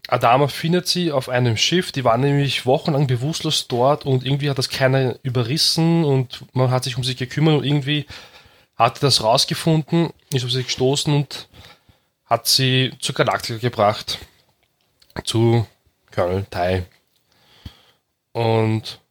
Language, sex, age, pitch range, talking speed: German, male, 20-39, 110-140 Hz, 135 wpm